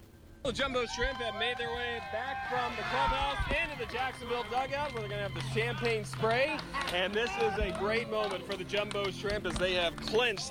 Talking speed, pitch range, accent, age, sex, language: 205 wpm, 175-225 Hz, American, 30-49, male, English